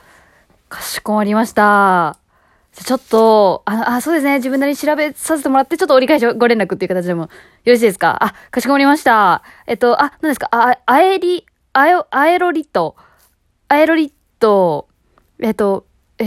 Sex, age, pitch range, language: female, 20-39, 205-285 Hz, Japanese